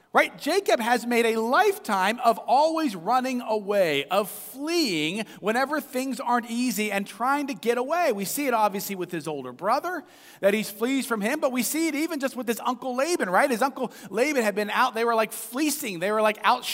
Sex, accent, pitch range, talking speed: male, American, 200-270 Hz, 210 wpm